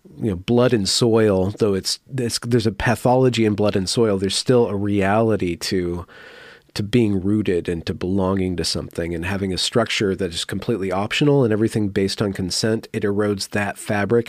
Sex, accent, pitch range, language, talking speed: male, American, 95-115 Hz, English, 190 wpm